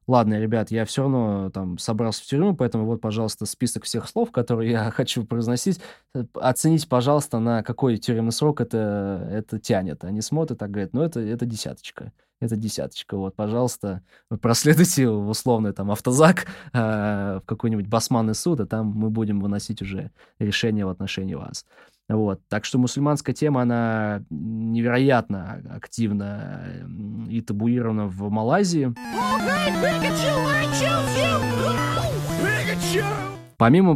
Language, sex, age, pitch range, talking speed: Russian, male, 20-39, 105-135 Hz, 130 wpm